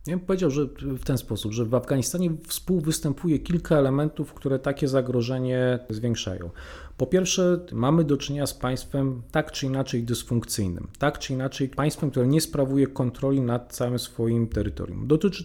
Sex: male